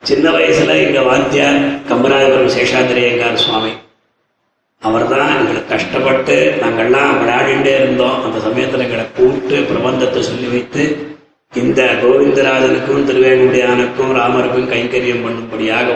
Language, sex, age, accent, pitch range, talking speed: Tamil, male, 30-49, native, 115-135 Hz, 100 wpm